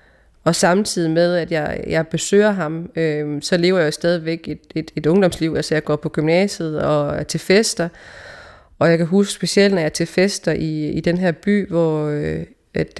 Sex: female